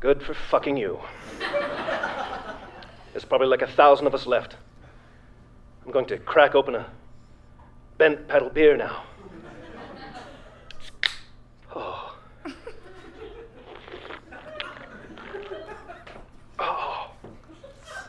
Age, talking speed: 40-59, 80 wpm